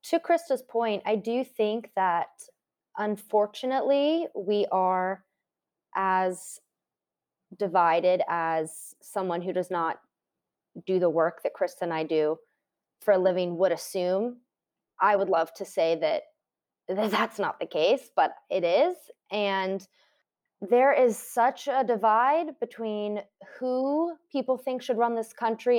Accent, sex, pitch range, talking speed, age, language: American, female, 185-240 Hz, 135 wpm, 20-39, English